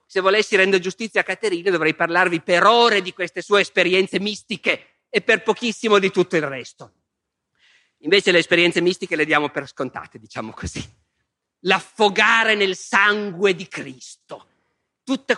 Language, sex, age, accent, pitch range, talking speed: Italian, male, 50-69, native, 170-225 Hz, 150 wpm